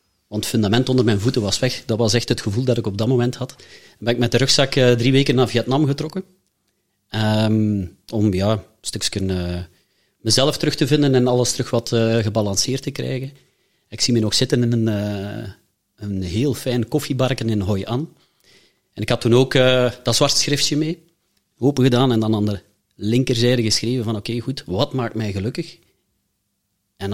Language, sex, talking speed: Dutch, male, 185 wpm